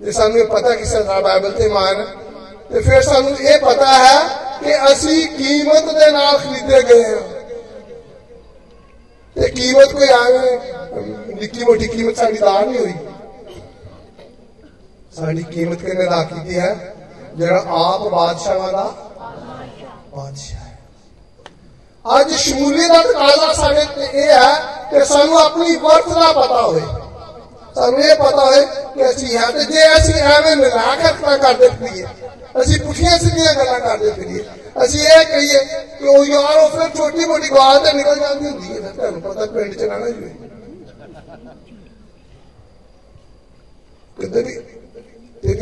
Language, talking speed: Hindi, 55 wpm